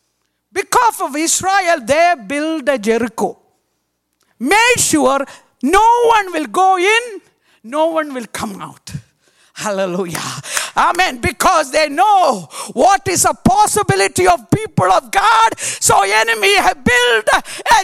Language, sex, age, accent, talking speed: English, female, 50-69, Indian, 125 wpm